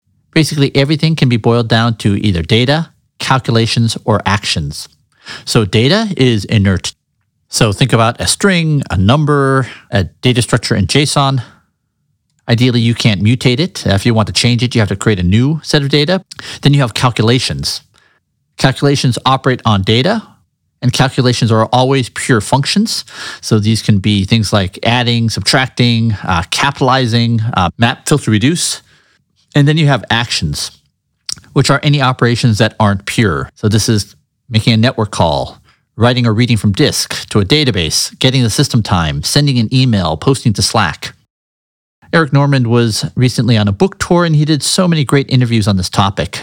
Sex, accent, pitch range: male, American, 105-135 Hz